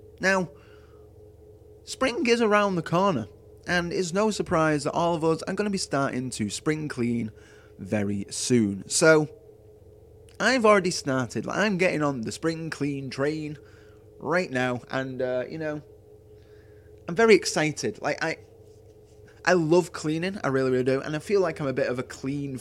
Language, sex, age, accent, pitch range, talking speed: English, male, 20-39, British, 105-150 Hz, 165 wpm